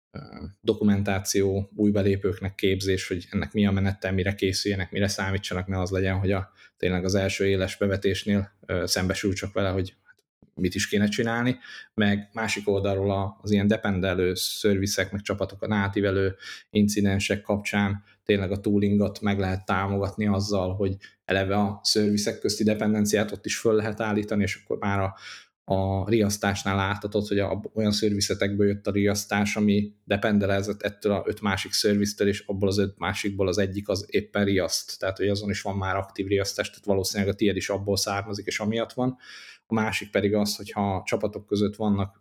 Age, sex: 20-39, male